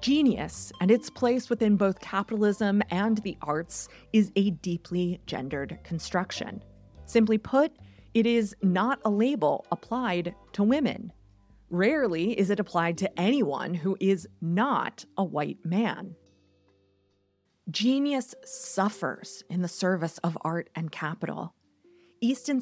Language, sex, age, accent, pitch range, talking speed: English, female, 30-49, American, 170-245 Hz, 125 wpm